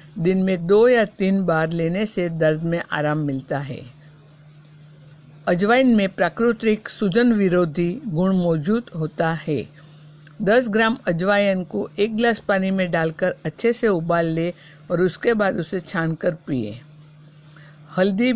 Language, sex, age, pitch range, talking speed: Hindi, female, 60-79, 155-200 Hz, 140 wpm